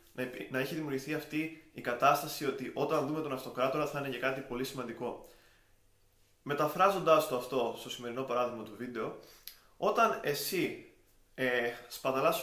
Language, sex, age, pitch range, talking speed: Greek, male, 20-39, 120-145 Hz, 140 wpm